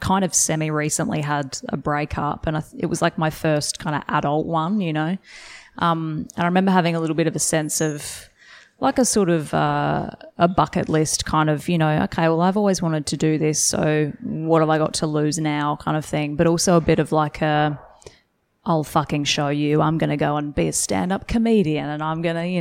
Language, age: English, 20-39